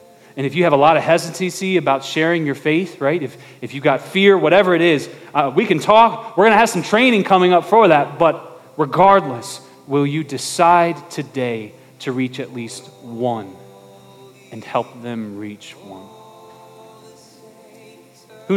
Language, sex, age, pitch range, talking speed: English, male, 30-49, 110-165 Hz, 170 wpm